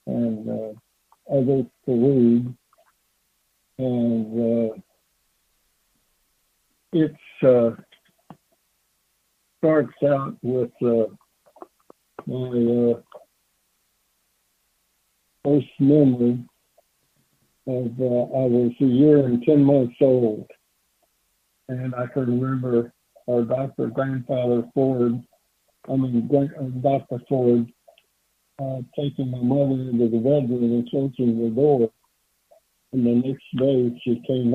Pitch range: 120-135 Hz